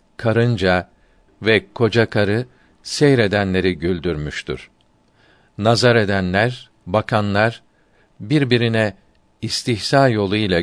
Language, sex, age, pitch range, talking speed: Turkish, male, 50-69, 95-115 Hz, 70 wpm